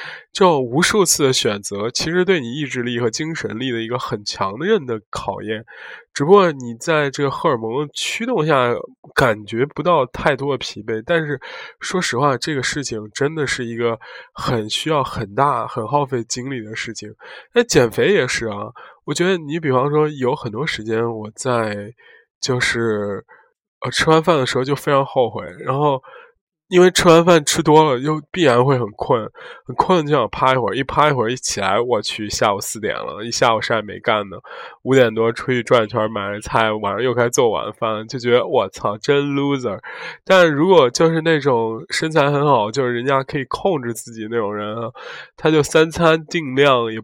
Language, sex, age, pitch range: Chinese, male, 20-39, 115-155 Hz